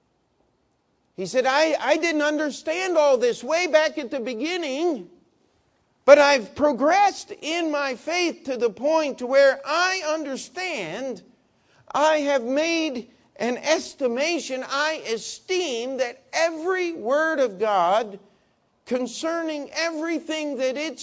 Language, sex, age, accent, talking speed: English, male, 50-69, American, 115 wpm